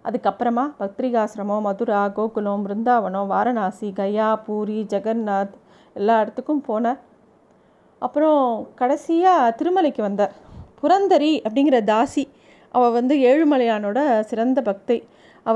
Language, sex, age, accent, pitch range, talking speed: Tamil, female, 30-49, native, 215-275 Hz, 95 wpm